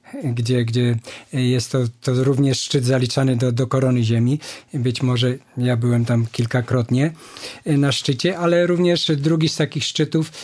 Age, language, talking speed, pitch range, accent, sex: 50-69, Polish, 150 wpm, 125-150 Hz, native, male